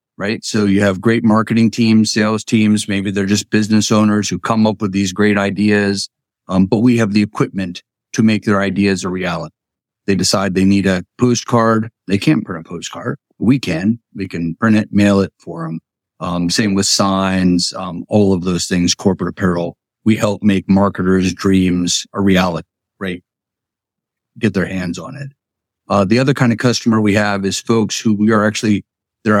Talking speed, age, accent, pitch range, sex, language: 190 wpm, 50-69, American, 95-110 Hz, male, English